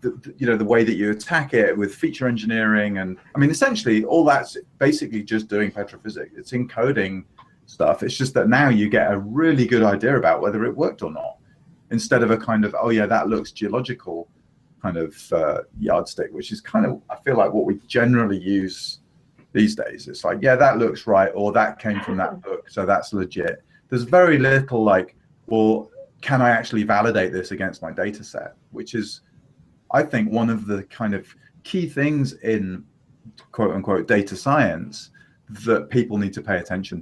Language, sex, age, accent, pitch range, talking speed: English, male, 30-49, British, 100-125 Hz, 190 wpm